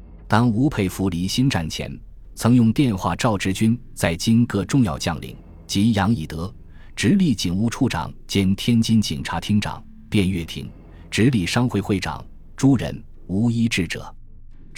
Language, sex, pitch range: Chinese, male, 85-115 Hz